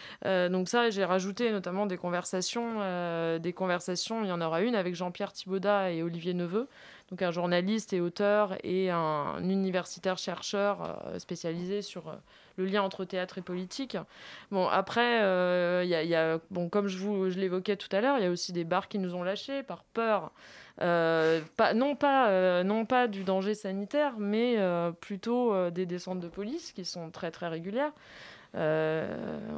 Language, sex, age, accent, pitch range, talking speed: French, female, 20-39, French, 170-205 Hz, 185 wpm